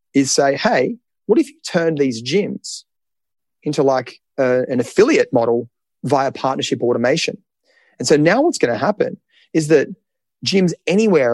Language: English